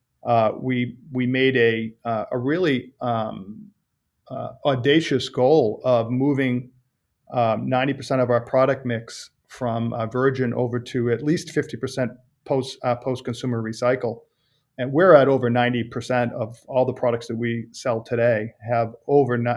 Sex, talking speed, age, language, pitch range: male, 145 wpm, 40-59, French, 120-135 Hz